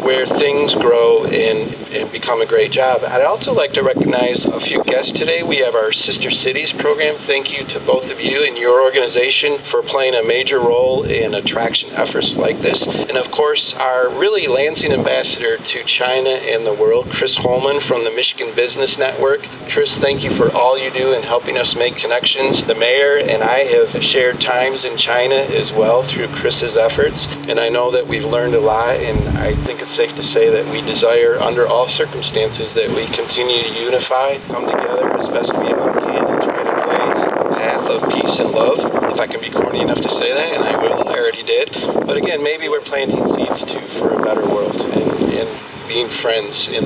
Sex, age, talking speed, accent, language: male, 40-59, 205 wpm, American, English